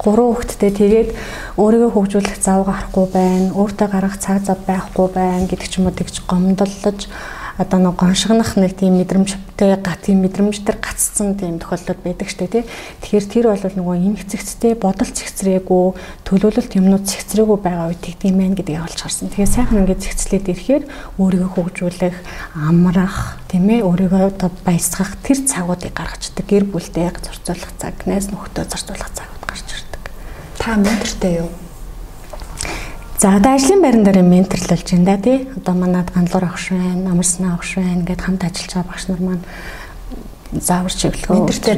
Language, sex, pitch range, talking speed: Russian, female, 180-205 Hz, 120 wpm